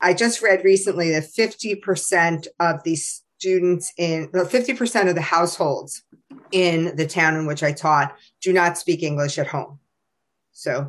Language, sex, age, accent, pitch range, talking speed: English, female, 40-59, American, 160-190 Hz, 160 wpm